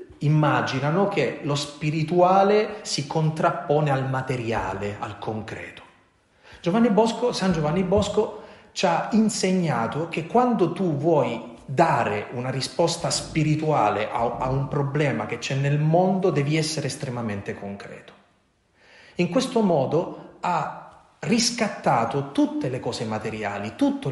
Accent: native